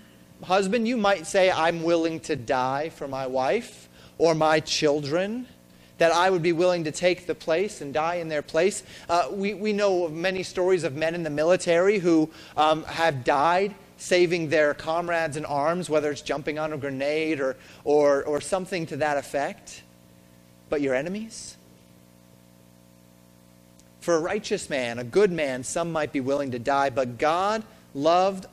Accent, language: American, English